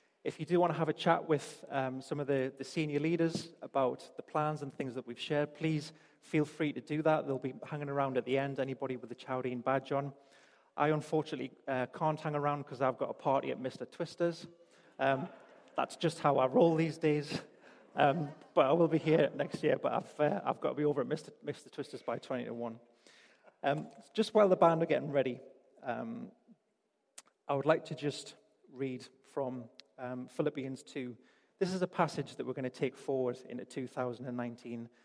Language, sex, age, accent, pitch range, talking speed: English, male, 30-49, British, 130-160 Hz, 205 wpm